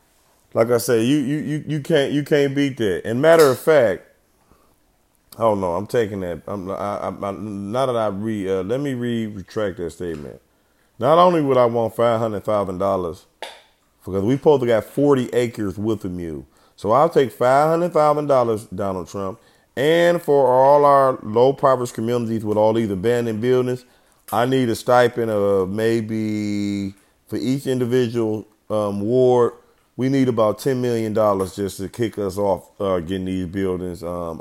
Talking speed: 180 wpm